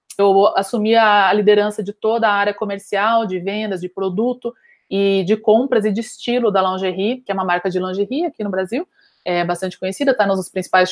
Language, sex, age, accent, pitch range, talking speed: Portuguese, female, 20-39, Brazilian, 185-225 Hz, 200 wpm